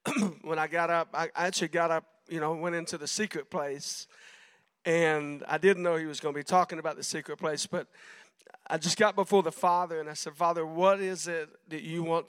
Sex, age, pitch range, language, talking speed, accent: male, 50-69, 155-190 Hz, English, 225 wpm, American